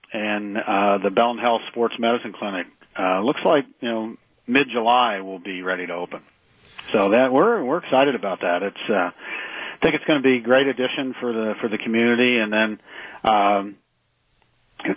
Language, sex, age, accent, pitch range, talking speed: English, male, 50-69, American, 95-120 Hz, 185 wpm